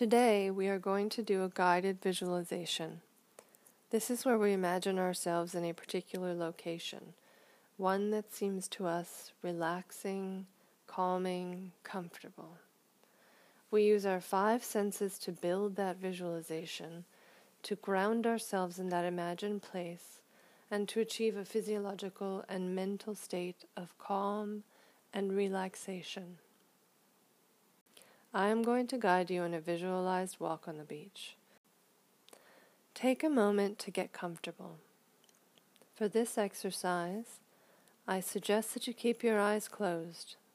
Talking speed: 125 wpm